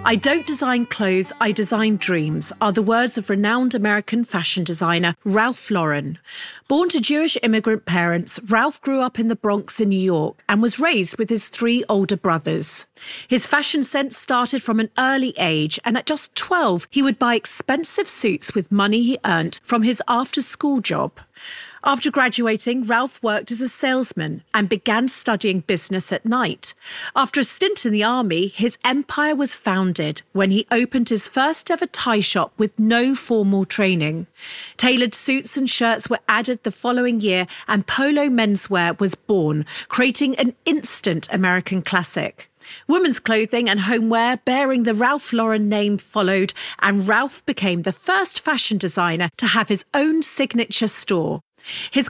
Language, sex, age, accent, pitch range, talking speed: English, female, 40-59, British, 195-265 Hz, 165 wpm